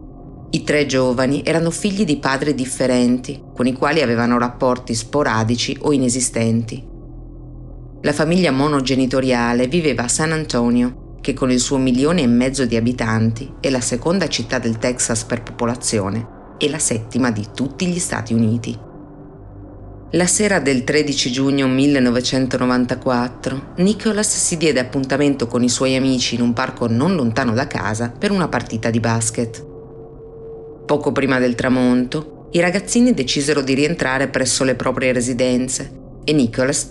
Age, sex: 30-49, female